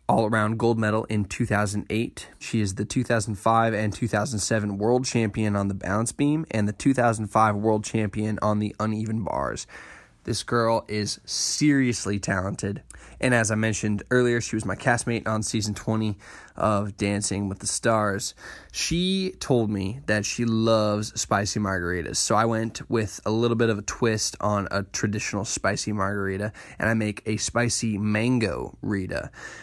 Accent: American